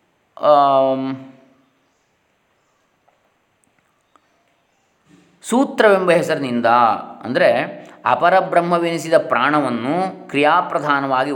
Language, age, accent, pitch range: Kannada, 20-39, native, 130-170 Hz